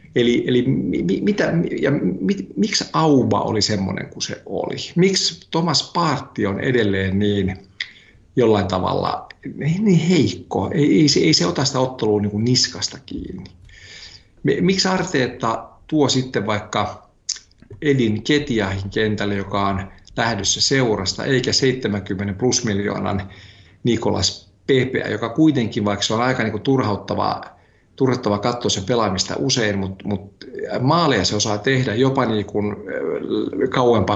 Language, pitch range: Finnish, 105-140 Hz